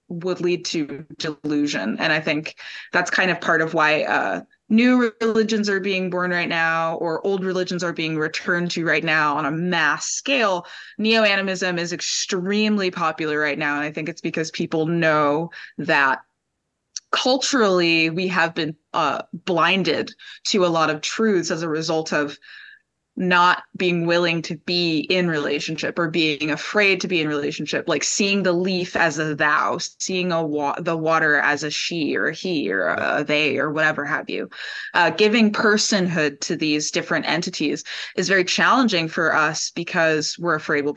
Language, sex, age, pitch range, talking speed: English, female, 20-39, 160-195 Hz, 175 wpm